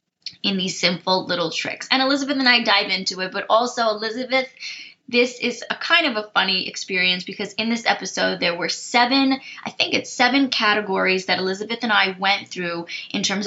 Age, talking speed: 10-29, 190 wpm